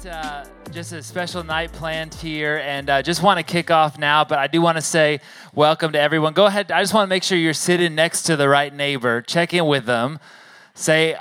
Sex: male